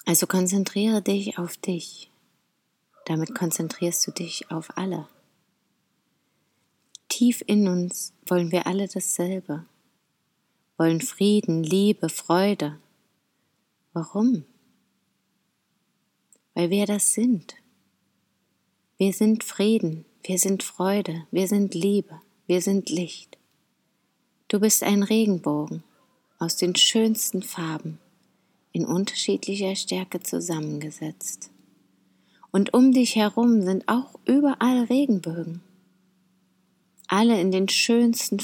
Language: German